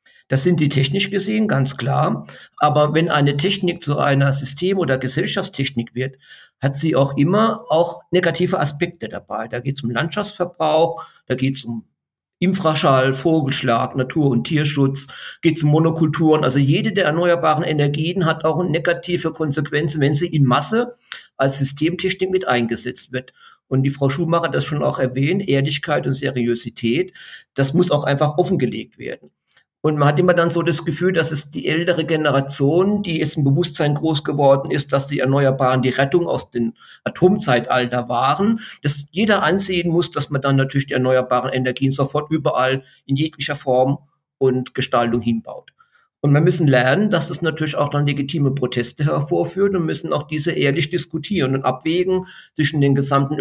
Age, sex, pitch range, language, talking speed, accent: 50-69, male, 135-170 Hz, German, 170 wpm, German